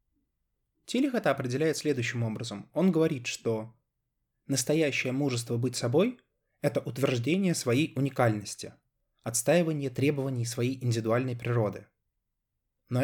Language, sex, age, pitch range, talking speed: Russian, male, 20-39, 115-140 Hz, 95 wpm